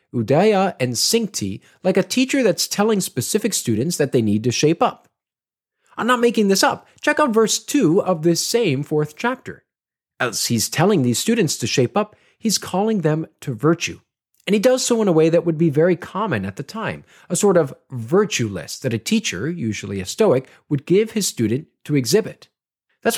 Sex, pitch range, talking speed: male, 135-210 Hz, 195 wpm